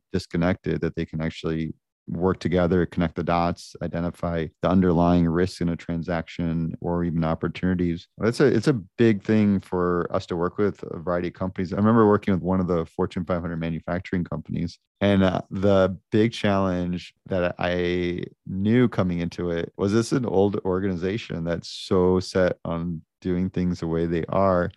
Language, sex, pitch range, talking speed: English, male, 85-100 Hz, 170 wpm